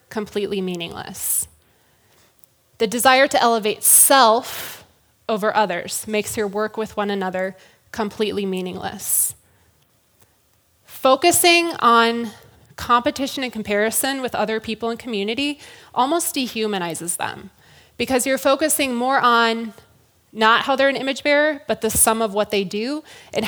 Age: 20-39